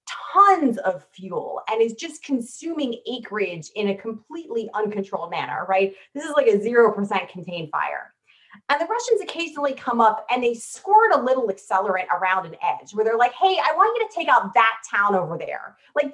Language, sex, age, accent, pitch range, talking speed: English, female, 30-49, American, 195-285 Hz, 195 wpm